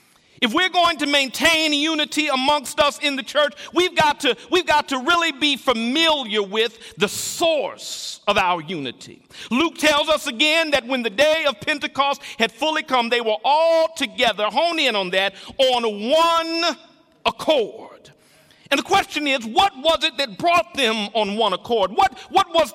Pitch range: 230-315 Hz